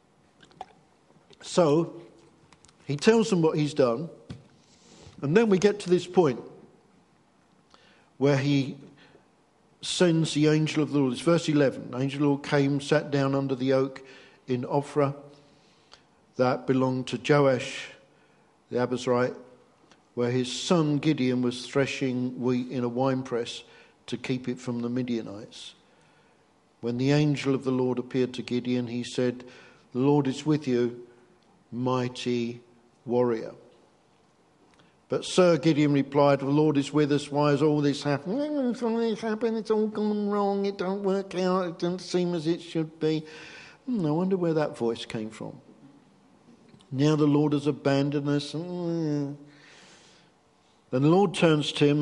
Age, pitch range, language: 50-69, 130-165 Hz, English